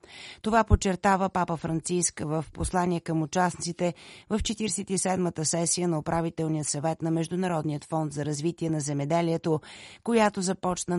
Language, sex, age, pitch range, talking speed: Bulgarian, female, 30-49, 160-185 Hz, 125 wpm